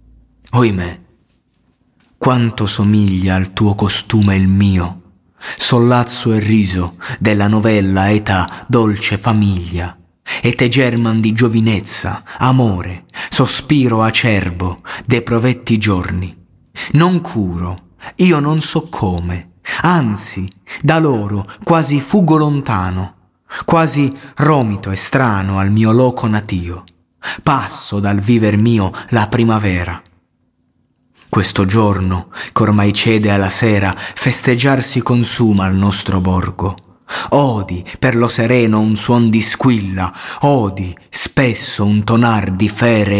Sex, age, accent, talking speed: male, 30-49, native, 110 wpm